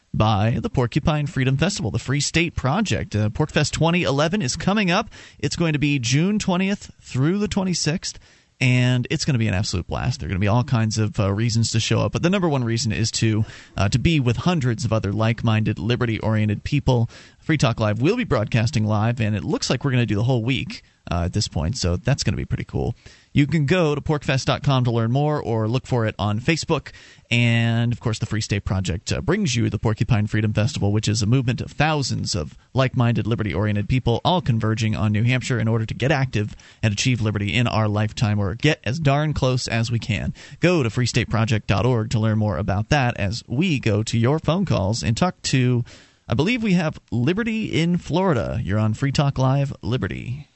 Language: English